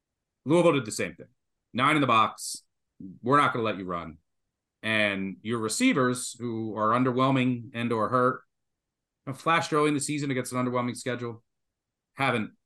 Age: 30-49